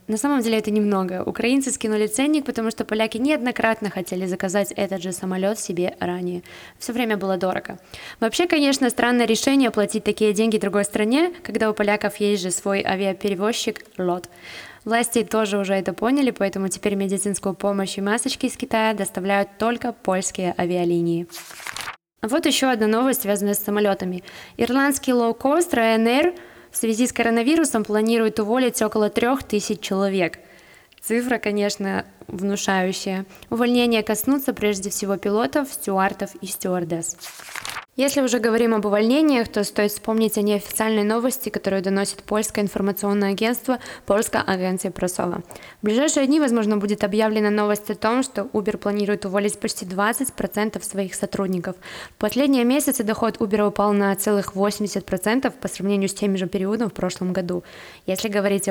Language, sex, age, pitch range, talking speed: Russian, female, 20-39, 195-230 Hz, 145 wpm